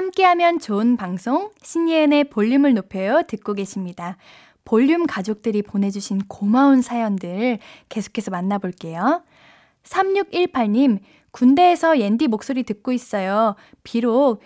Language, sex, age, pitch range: Korean, female, 10-29, 215-320 Hz